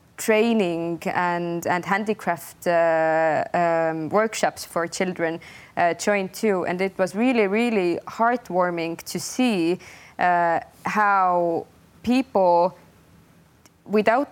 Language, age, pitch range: English, 20-39, 170-210 Hz